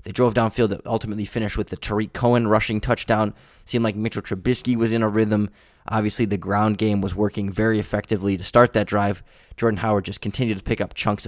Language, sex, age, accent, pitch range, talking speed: English, male, 20-39, American, 100-120 Hz, 215 wpm